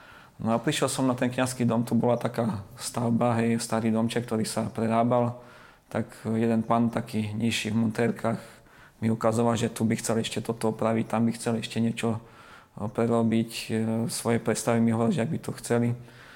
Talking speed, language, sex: 170 wpm, Slovak, male